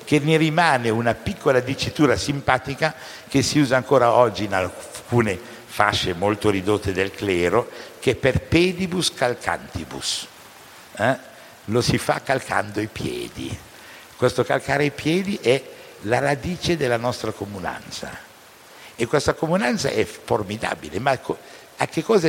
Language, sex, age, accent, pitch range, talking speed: Italian, male, 60-79, native, 95-150 Hz, 135 wpm